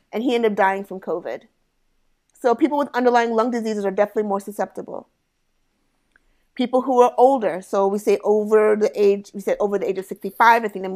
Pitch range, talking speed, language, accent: 195-230 Hz, 205 wpm, English, American